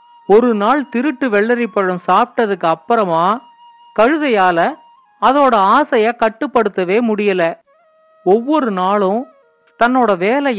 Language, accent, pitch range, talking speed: Tamil, native, 200-275 Hz, 90 wpm